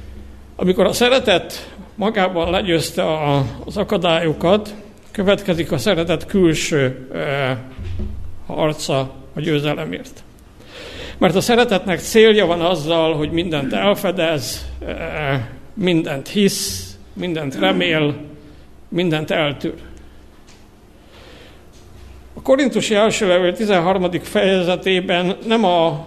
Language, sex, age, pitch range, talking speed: Hungarian, male, 60-79, 150-190 Hz, 85 wpm